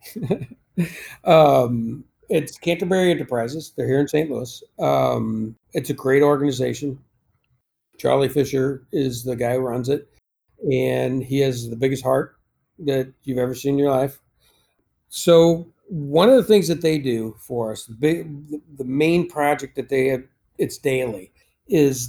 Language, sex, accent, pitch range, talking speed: English, male, American, 130-165 Hz, 145 wpm